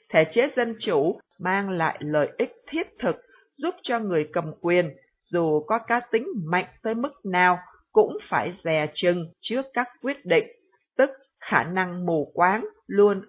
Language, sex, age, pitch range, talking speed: Vietnamese, female, 50-69, 175-240 Hz, 165 wpm